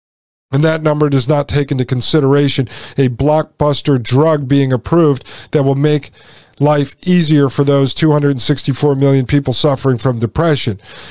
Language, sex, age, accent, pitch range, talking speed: English, male, 40-59, American, 130-155 Hz, 140 wpm